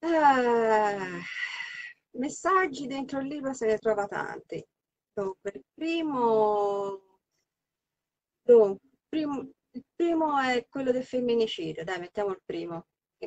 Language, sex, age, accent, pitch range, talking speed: Italian, female, 30-49, native, 160-225 Hz, 100 wpm